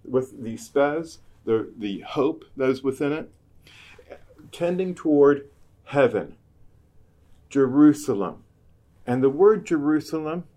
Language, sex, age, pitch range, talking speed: English, male, 40-59, 115-160 Hz, 100 wpm